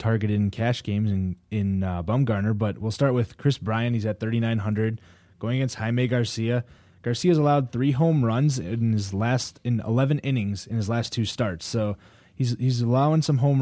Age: 20-39